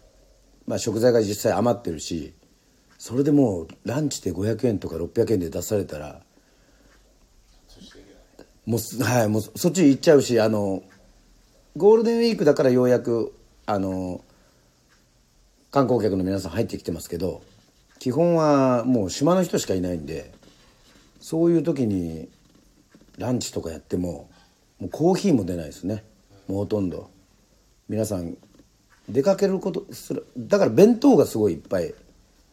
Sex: male